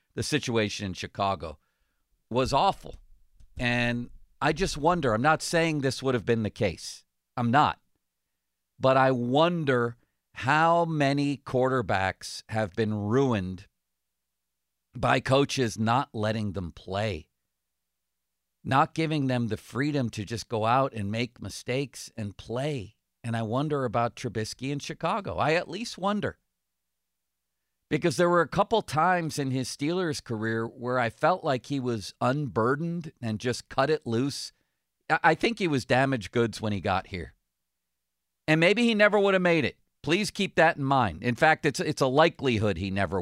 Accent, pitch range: American, 95-145 Hz